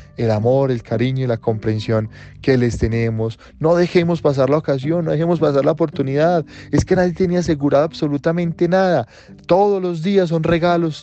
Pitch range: 125-165 Hz